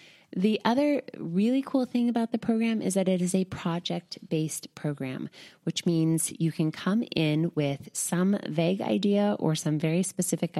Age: 20-39